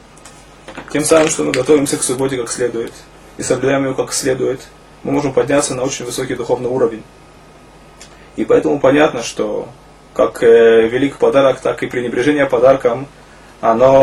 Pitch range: 130-155 Hz